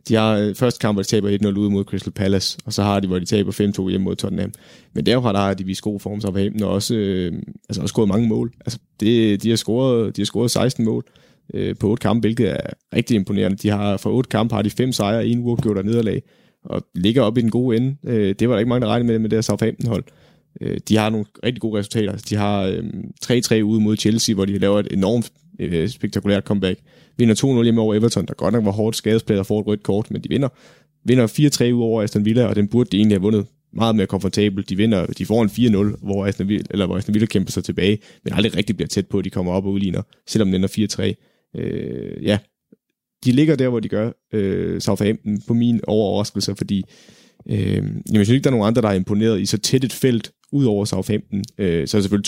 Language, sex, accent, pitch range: Danish, male, native, 100-115 Hz